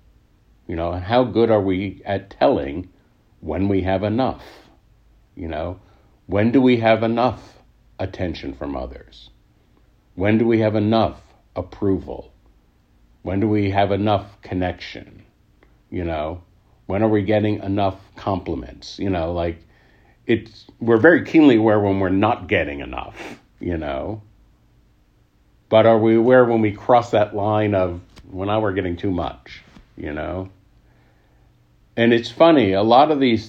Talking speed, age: 150 wpm, 60-79